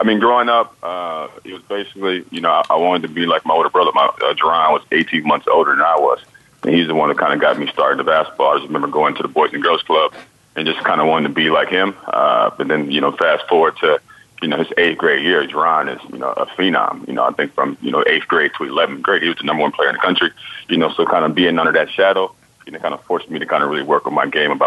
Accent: American